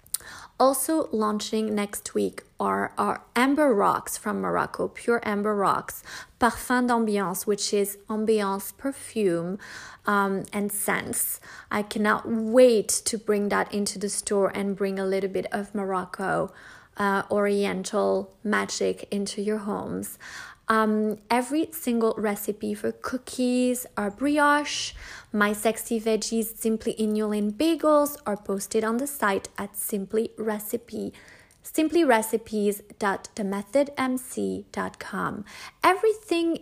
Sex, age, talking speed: female, 20-39, 110 wpm